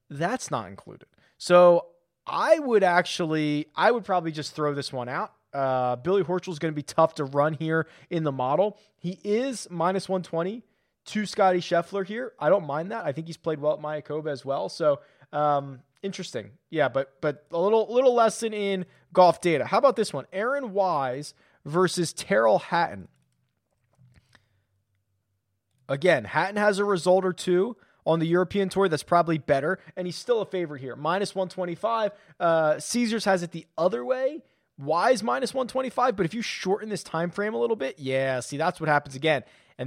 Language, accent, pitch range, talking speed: English, American, 145-195 Hz, 180 wpm